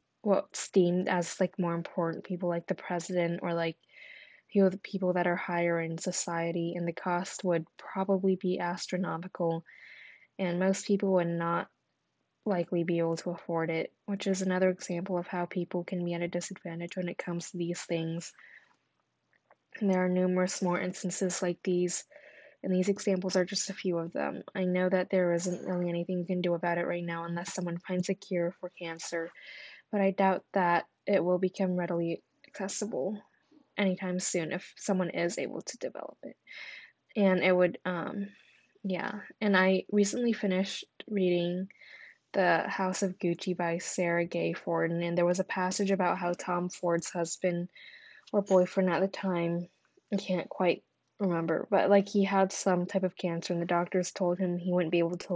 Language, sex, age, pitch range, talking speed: English, female, 10-29, 175-190 Hz, 180 wpm